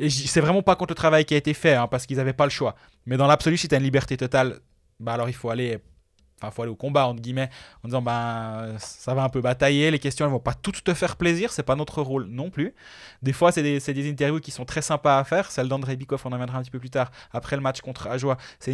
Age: 20-39